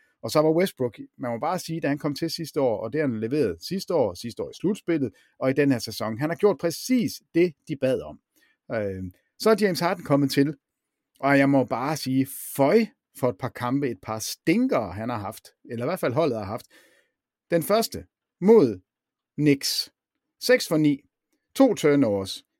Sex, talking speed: male, 200 wpm